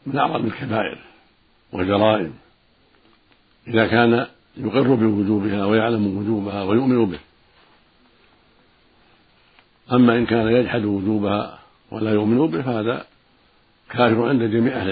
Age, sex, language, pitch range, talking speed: 60-79, male, Arabic, 105-120 Hz, 100 wpm